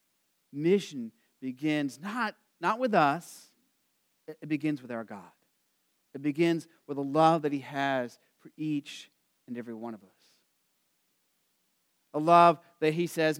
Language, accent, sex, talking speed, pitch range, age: English, American, male, 140 wpm, 140-200 Hz, 40-59